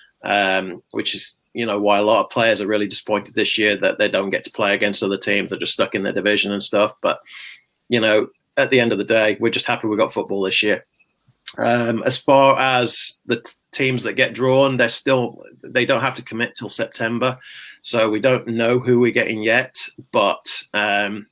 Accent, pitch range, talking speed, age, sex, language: British, 100-120 Hz, 215 wpm, 30-49, male, English